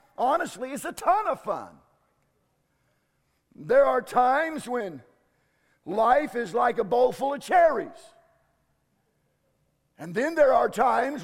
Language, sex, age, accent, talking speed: English, male, 50-69, American, 125 wpm